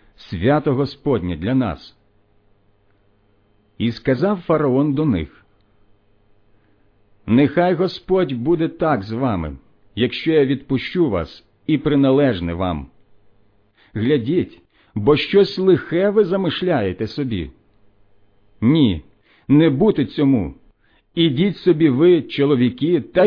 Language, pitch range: Ukrainian, 100-150 Hz